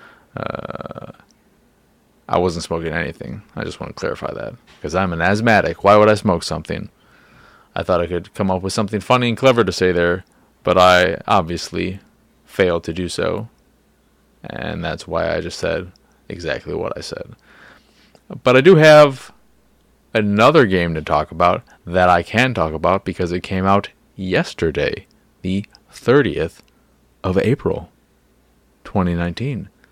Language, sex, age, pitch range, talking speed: English, male, 30-49, 90-110 Hz, 150 wpm